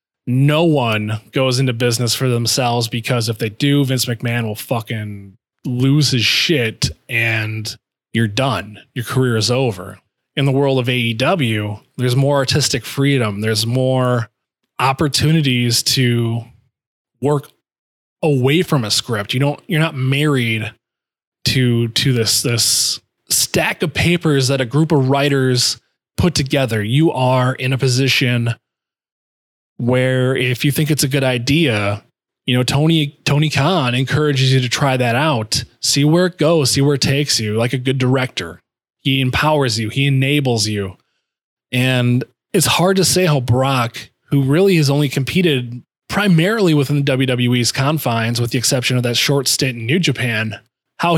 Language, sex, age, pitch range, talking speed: English, male, 20-39, 120-145 Hz, 155 wpm